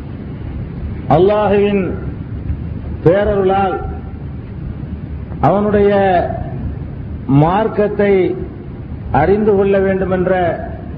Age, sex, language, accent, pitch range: 50-69, male, Tamil, native, 170-205 Hz